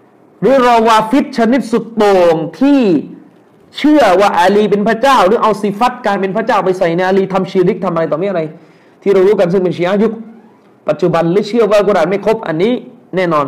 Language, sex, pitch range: Thai, male, 175-220 Hz